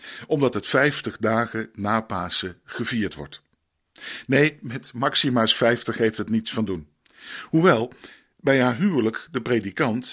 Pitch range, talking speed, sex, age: 105-135 Hz, 135 wpm, male, 50-69